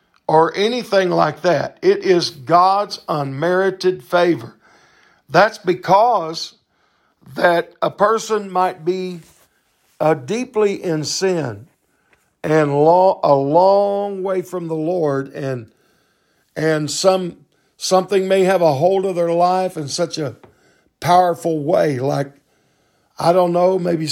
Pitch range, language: 155-190 Hz, English